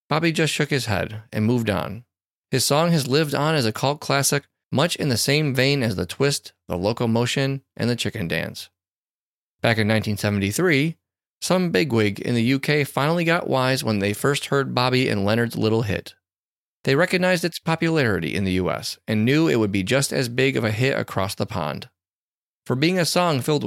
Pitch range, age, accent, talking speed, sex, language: 105-140 Hz, 30-49, American, 195 wpm, male, English